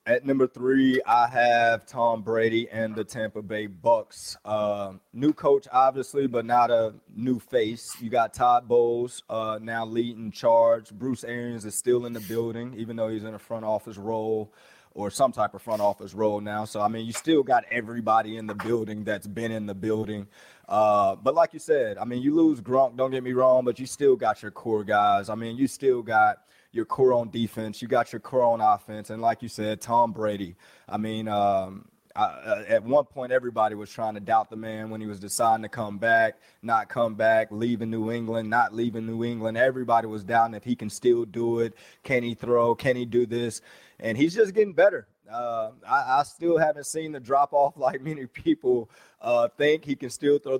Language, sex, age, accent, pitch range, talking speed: English, male, 30-49, American, 110-130 Hz, 210 wpm